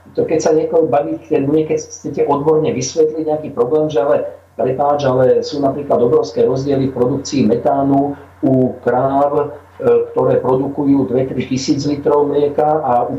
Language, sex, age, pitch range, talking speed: Slovak, male, 40-59, 130-155 Hz, 135 wpm